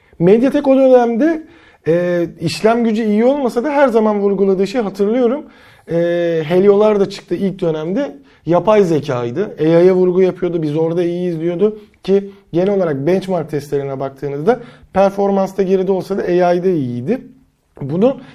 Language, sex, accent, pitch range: Turkish, male, native, 160-210 Hz